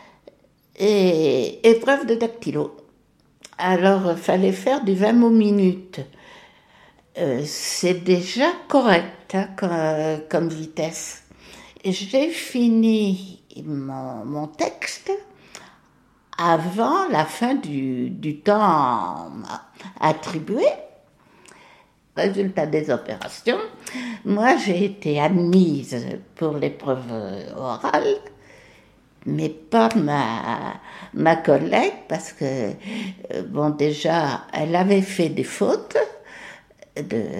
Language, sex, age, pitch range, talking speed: French, female, 60-79, 155-230 Hz, 95 wpm